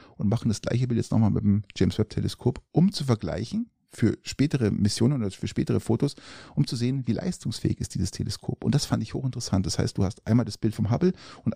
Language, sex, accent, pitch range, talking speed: German, male, German, 105-125 Hz, 225 wpm